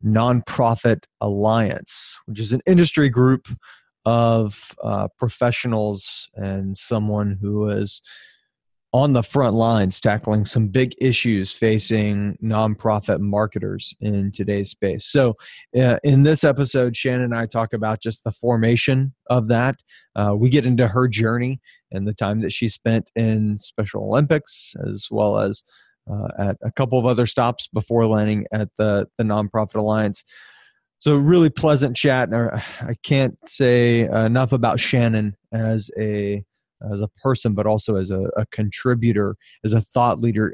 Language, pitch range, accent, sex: English, 105-125 Hz, American, male